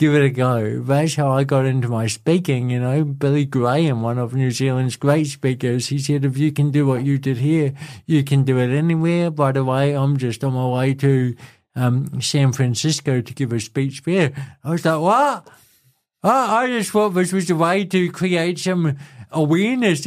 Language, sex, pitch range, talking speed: English, male, 135-170 Hz, 205 wpm